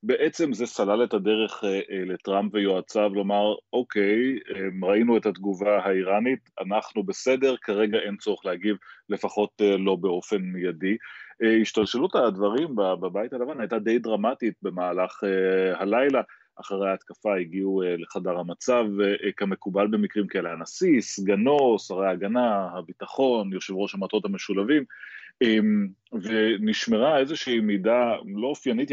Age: 30-49